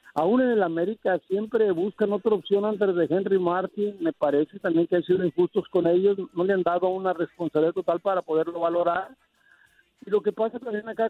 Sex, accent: male, Mexican